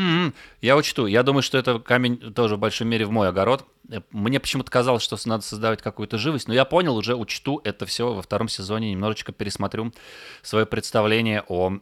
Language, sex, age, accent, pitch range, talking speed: Russian, male, 30-49, native, 100-125 Hz, 190 wpm